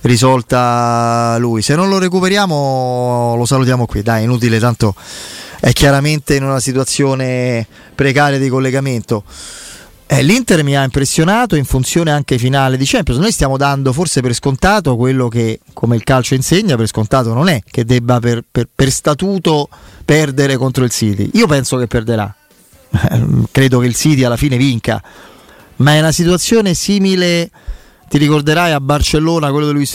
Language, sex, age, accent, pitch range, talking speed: Italian, male, 30-49, native, 125-160 Hz, 160 wpm